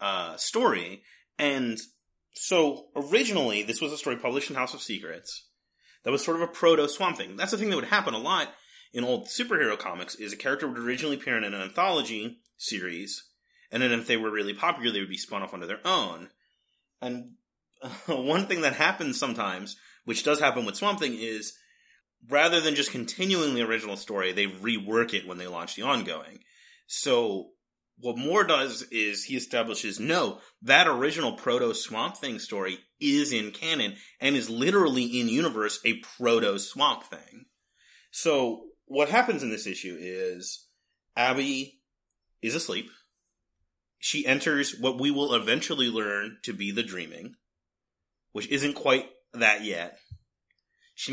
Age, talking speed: 30-49, 160 wpm